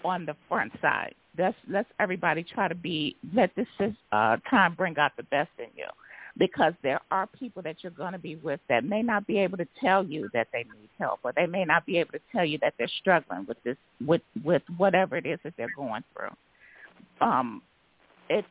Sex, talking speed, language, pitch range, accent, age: female, 215 wpm, English, 160-205 Hz, American, 50-69